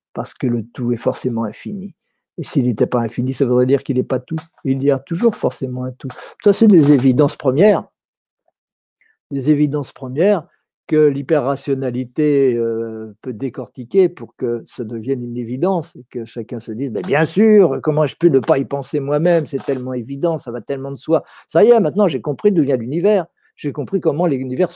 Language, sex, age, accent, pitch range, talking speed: French, male, 50-69, French, 130-180 Hz, 200 wpm